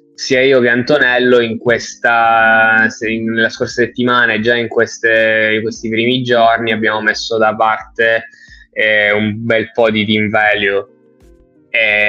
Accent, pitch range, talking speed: native, 110-120 Hz, 150 wpm